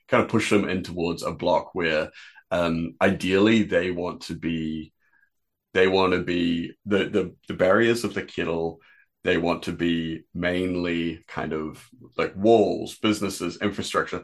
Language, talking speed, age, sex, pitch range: English, 155 wpm, 30-49, male, 85-95 Hz